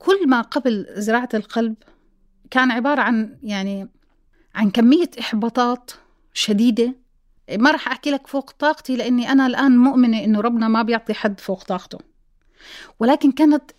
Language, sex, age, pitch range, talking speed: Arabic, female, 30-49, 220-275 Hz, 140 wpm